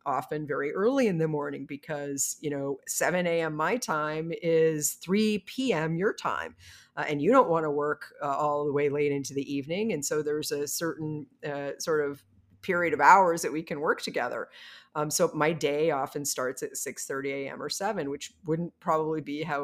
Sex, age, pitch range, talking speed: female, 50-69, 145-190 Hz, 200 wpm